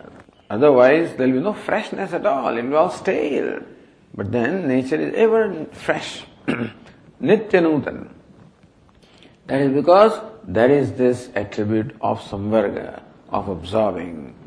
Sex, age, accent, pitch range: male, 50-69, Indian, 115-155 Hz